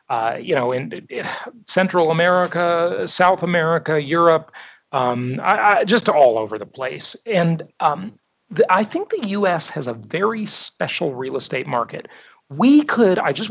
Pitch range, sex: 135-205 Hz, male